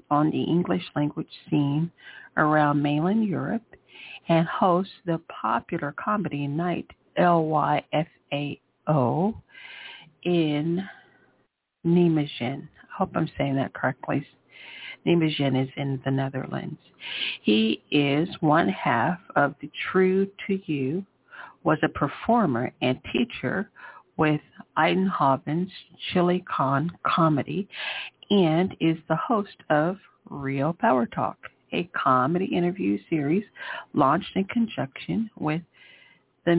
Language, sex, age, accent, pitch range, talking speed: English, female, 50-69, American, 140-175 Hz, 105 wpm